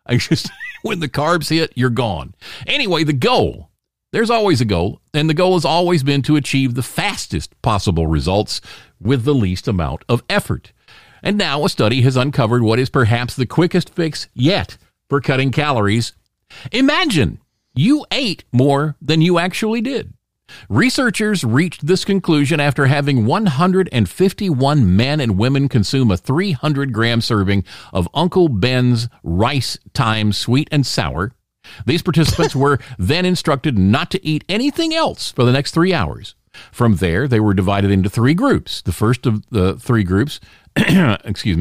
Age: 50-69